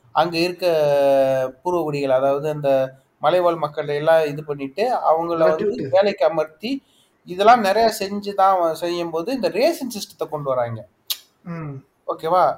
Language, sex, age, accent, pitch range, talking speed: Tamil, male, 30-49, native, 150-200 Hz, 125 wpm